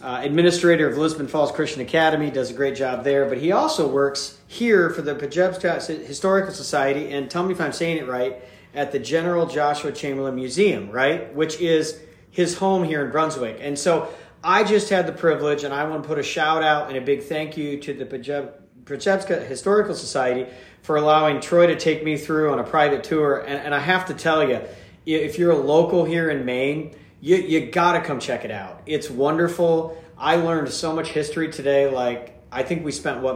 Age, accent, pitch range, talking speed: 40-59, American, 140-165 Hz, 205 wpm